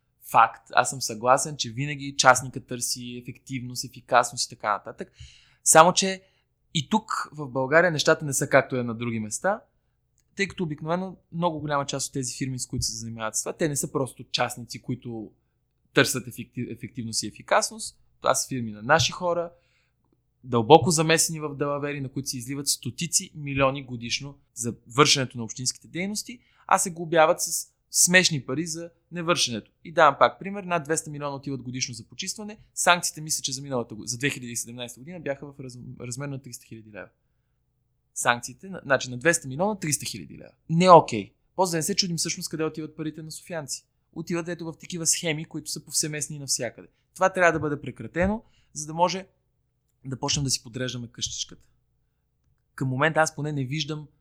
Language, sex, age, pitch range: Bulgarian, male, 20-39, 125-160 Hz